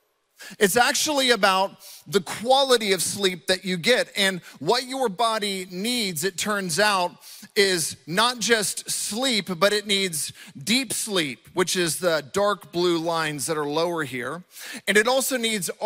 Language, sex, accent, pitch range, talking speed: English, male, American, 175-220 Hz, 155 wpm